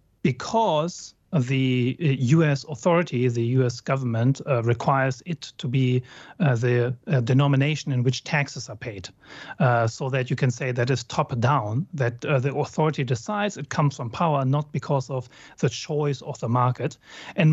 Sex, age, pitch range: male, 40-59, 130-155 Hz